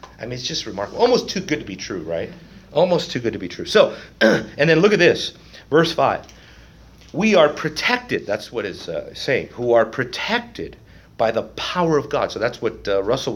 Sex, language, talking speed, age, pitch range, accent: male, English, 210 wpm, 40-59, 115-180 Hz, American